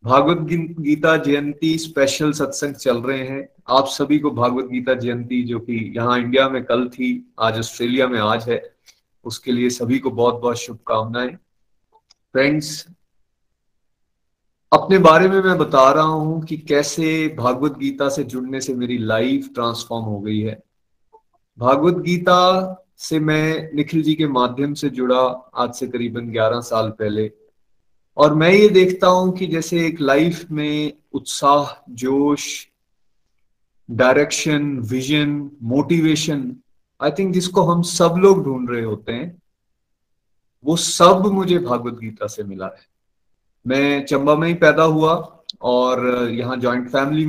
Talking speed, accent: 140 wpm, native